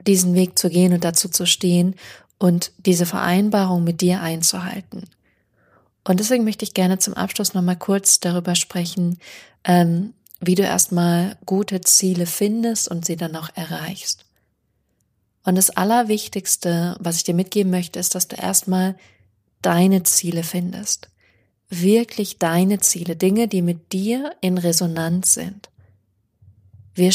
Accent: German